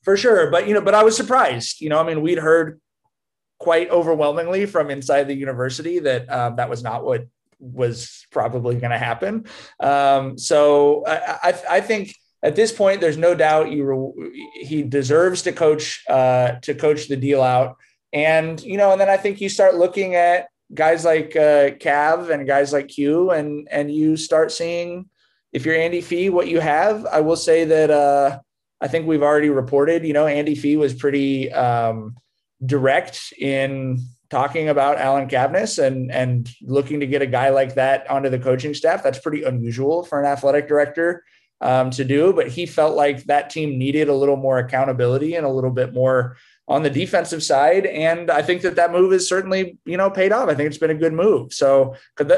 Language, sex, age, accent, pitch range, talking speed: English, male, 30-49, American, 135-170 Hz, 200 wpm